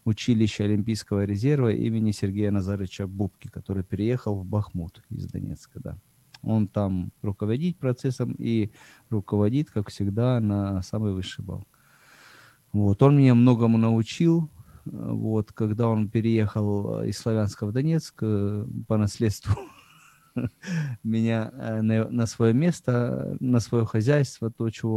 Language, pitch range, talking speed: Ukrainian, 105-130 Hz, 120 wpm